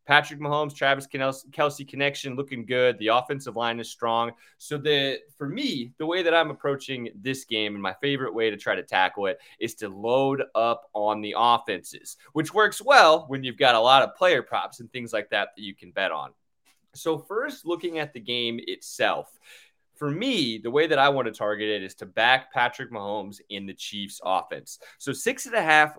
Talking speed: 210 wpm